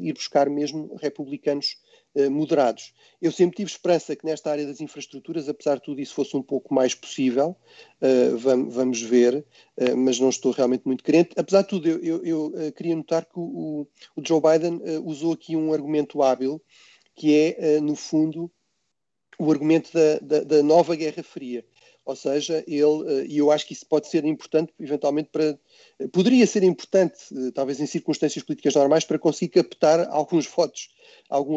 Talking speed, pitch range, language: 165 wpm, 140-160 Hz, Portuguese